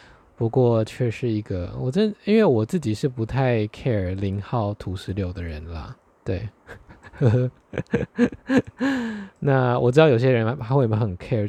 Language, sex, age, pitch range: Chinese, male, 20-39, 105-130 Hz